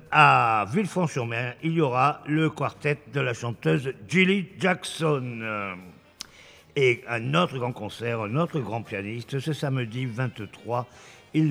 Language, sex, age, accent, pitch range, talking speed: French, male, 50-69, French, 125-165 Hz, 130 wpm